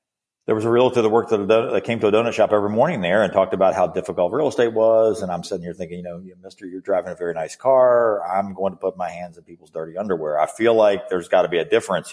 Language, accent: English, American